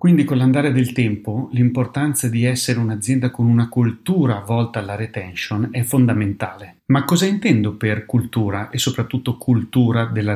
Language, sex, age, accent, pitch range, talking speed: Italian, male, 40-59, native, 105-130 Hz, 150 wpm